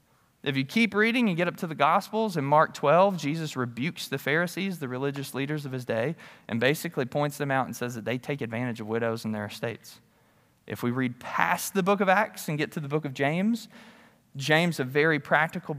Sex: male